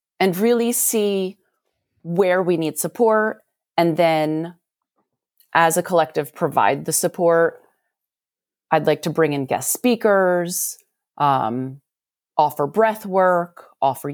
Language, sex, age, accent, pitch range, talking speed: English, female, 30-49, American, 160-215 Hz, 115 wpm